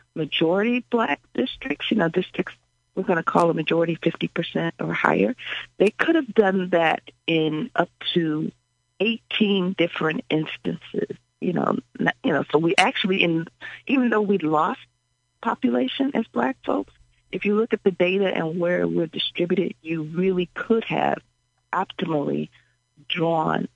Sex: female